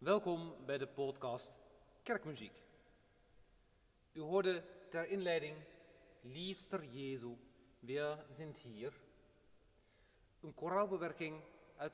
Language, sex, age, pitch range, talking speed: Dutch, male, 40-59, 125-155 Hz, 85 wpm